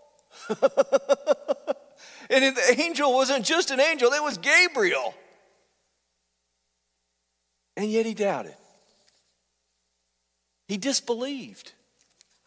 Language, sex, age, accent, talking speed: English, male, 50-69, American, 75 wpm